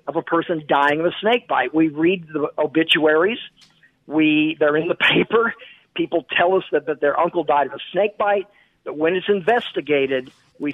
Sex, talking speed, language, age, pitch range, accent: male, 190 wpm, English, 50-69, 150-205 Hz, American